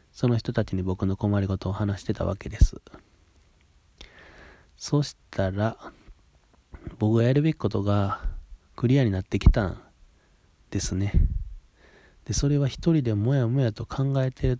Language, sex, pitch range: Japanese, male, 90-115 Hz